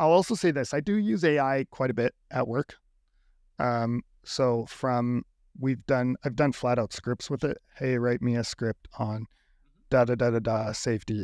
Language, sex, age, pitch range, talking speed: English, male, 40-59, 115-140 Hz, 200 wpm